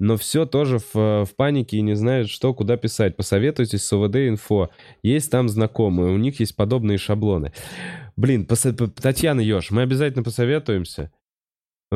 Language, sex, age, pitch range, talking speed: Russian, male, 20-39, 85-115 Hz, 145 wpm